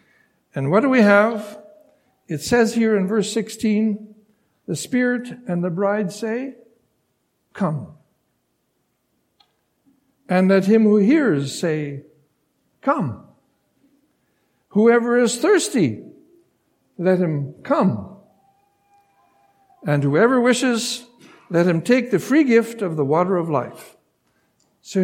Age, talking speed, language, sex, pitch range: 60-79, 110 wpm, English, male, 175-250 Hz